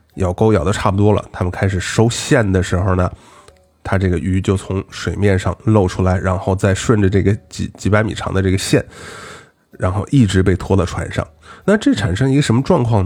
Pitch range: 95-140 Hz